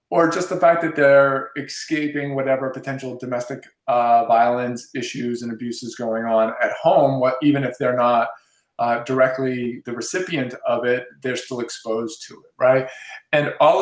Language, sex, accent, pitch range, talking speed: English, male, American, 120-140 Hz, 165 wpm